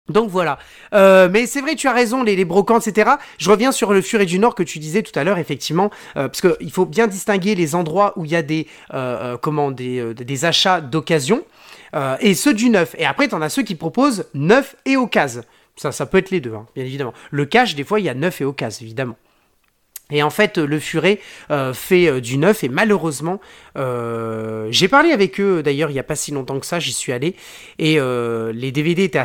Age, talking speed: 30-49, 240 wpm